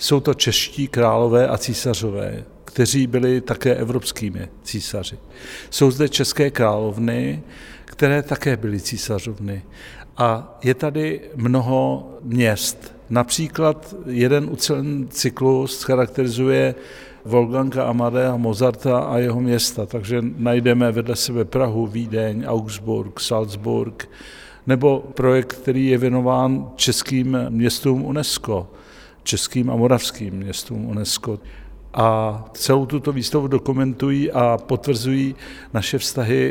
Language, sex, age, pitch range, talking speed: Czech, male, 50-69, 110-130 Hz, 105 wpm